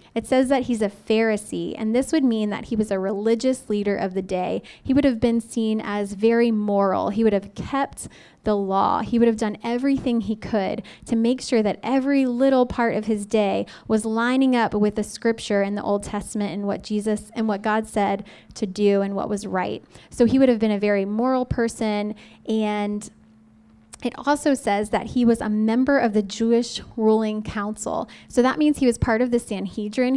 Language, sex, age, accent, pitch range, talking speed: English, female, 10-29, American, 210-250 Hz, 210 wpm